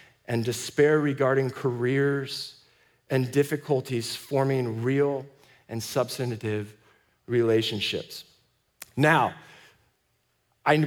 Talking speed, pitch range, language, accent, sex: 70 wpm, 135-165 Hz, English, American, male